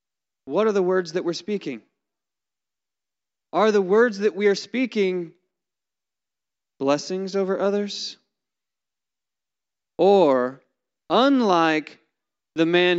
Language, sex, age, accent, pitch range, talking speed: English, male, 30-49, American, 155-210 Hz, 95 wpm